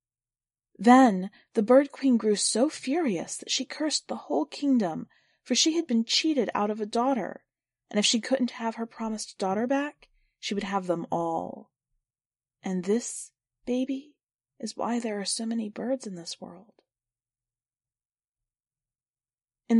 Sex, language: female, English